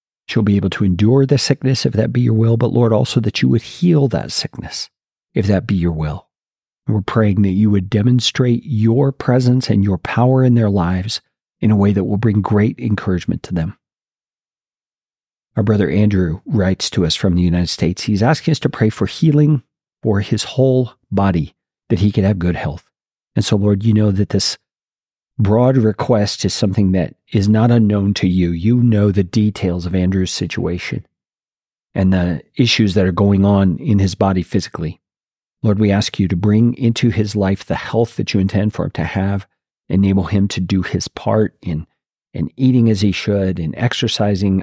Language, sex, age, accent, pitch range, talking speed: English, male, 40-59, American, 95-115 Hz, 195 wpm